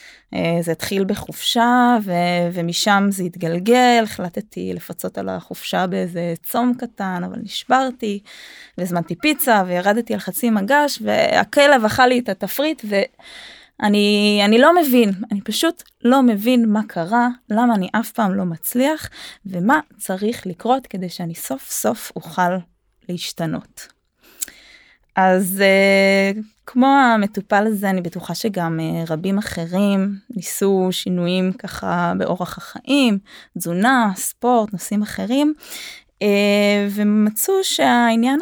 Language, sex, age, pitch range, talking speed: Hebrew, female, 20-39, 185-240 Hz, 110 wpm